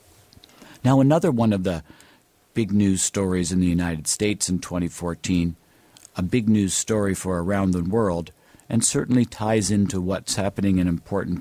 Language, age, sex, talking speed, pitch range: English, 50-69, male, 160 wpm, 90-110 Hz